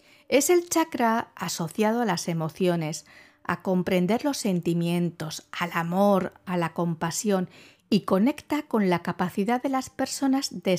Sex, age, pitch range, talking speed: female, 50-69, 175-255 Hz, 140 wpm